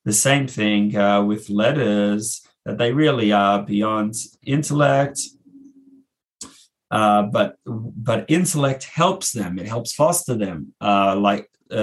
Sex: male